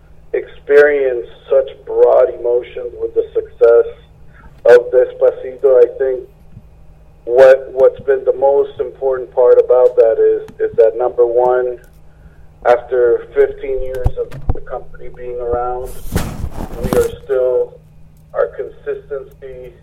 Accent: American